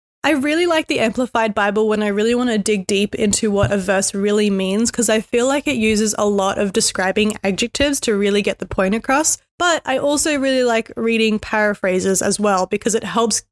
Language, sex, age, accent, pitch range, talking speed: English, female, 20-39, Australian, 205-245 Hz, 215 wpm